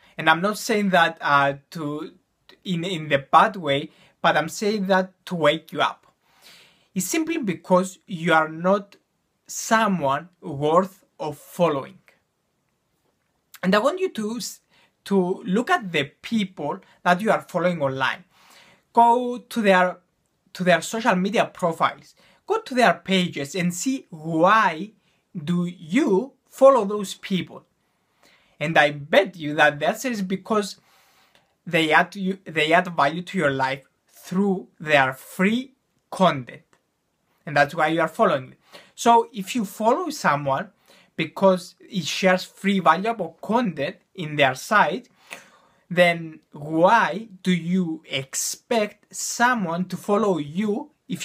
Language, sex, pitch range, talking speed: English, male, 160-200 Hz, 135 wpm